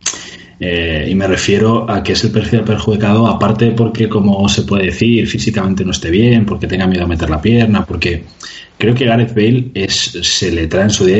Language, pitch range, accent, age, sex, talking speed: Spanish, 85-110 Hz, Spanish, 20-39, male, 210 wpm